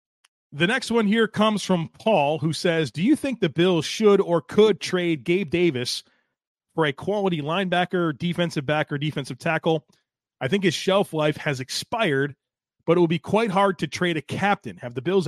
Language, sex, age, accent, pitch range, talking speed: English, male, 30-49, American, 150-195 Hz, 190 wpm